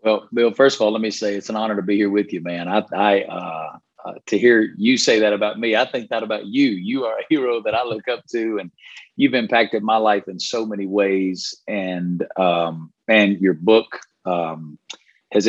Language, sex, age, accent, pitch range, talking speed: English, male, 40-59, American, 100-115 Hz, 225 wpm